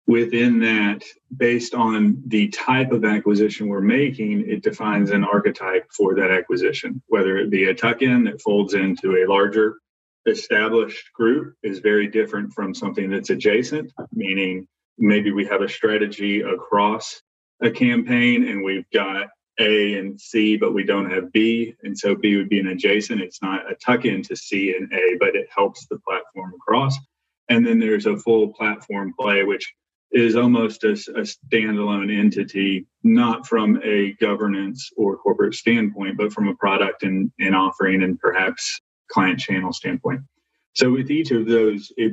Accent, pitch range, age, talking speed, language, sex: American, 100-120 Hz, 30-49, 170 wpm, English, male